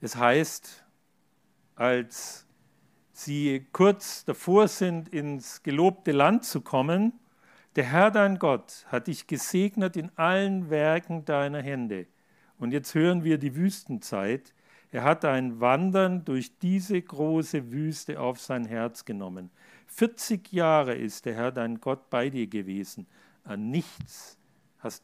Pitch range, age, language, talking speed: 140-185 Hz, 50-69, German, 130 wpm